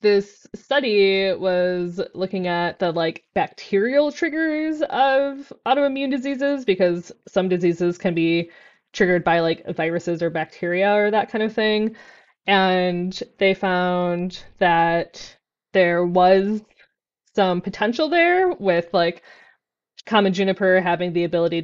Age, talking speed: 20-39, 120 wpm